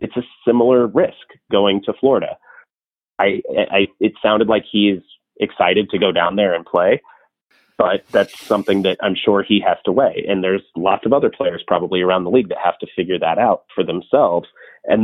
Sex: male